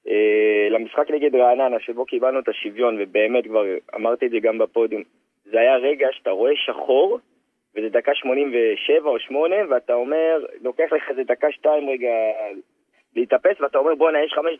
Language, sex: Hebrew, male